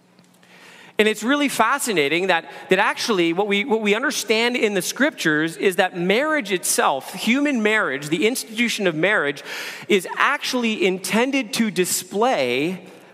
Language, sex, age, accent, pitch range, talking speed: English, male, 40-59, American, 185-240 Hz, 130 wpm